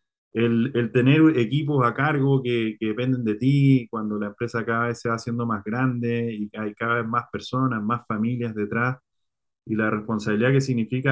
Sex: male